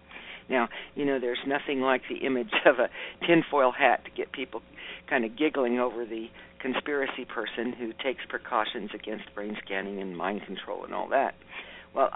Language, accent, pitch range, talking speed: English, American, 115-135 Hz, 175 wpm